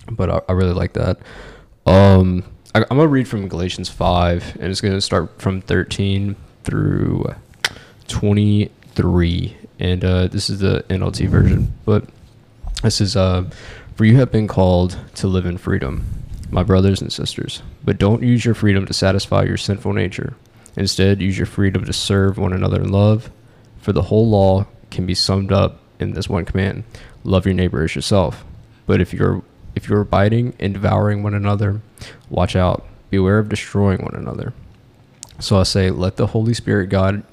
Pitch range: 95-110 Hz